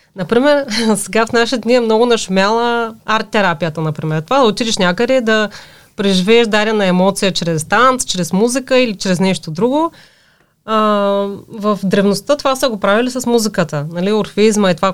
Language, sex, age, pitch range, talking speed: Bulgarian, female, 30-49, 185-235 Hz, 155 wpm